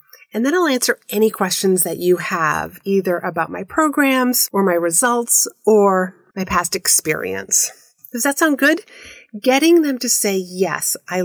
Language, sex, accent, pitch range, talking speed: English, female, American, 180-235 Hz, 160 wpm